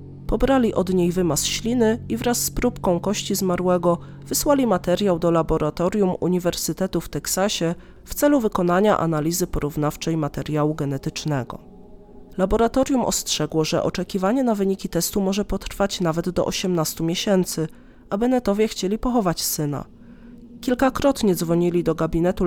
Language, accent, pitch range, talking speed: Polish, native, 165-225 Hz, 125 wpm